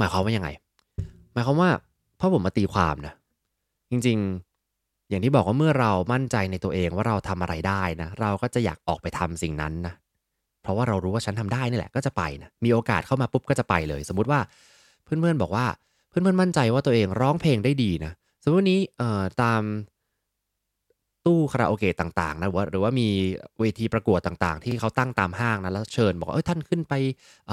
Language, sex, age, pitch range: English, male, 20-39, 90-125 Hz